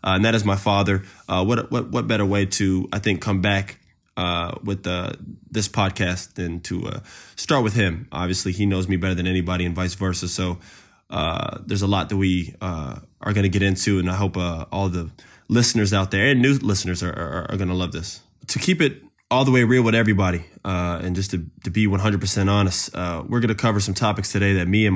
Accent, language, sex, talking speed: American, English, male, 235 wpm